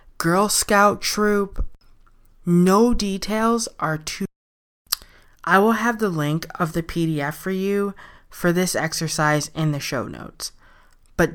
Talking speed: 130 wpm